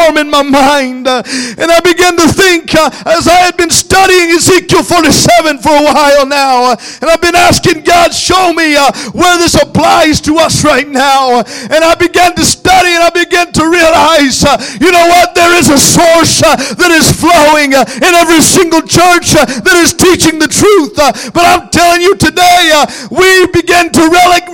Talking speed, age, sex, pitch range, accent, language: 195 wpm, 50-69, male, 295-370 Hz, American, English